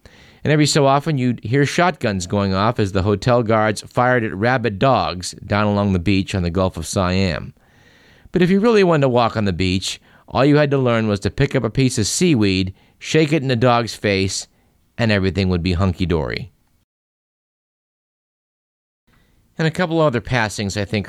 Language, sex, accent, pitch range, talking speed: English, male, American, 95-135 Hz, 190 wpm